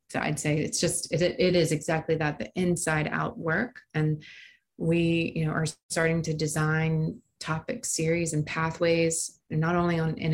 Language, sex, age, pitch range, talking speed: English, female, 20-39, 155-175 Hz, 180 wpm